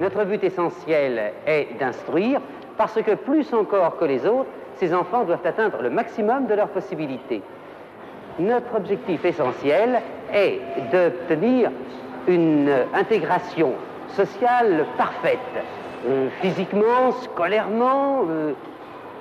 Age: 50-69